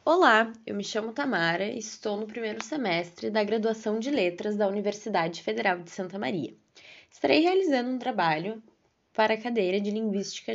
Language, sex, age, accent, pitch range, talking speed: Portuguese, female, 10-29, Brazilian, 200-310 Hz, 165 wpm